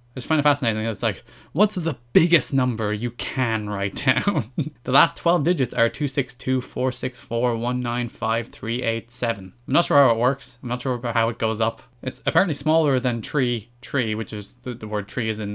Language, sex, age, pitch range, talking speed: English, male, 20-39, 115-140 Hz, 230 wpm